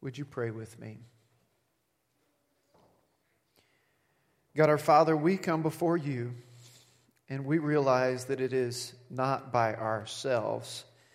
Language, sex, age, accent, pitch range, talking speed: English, male, 40-59, American, 115-135 Hz, 115 wpm